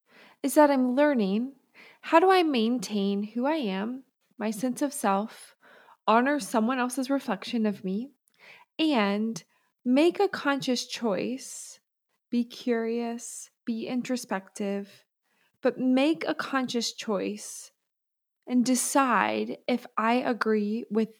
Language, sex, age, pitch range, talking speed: English, female, 20-39, 200-260 Hz, 115 wpm